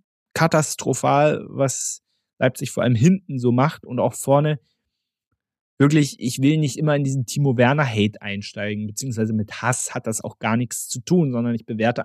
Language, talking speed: German, 165 wpm